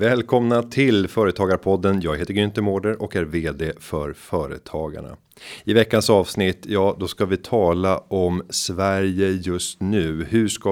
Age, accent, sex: 30-49, native, male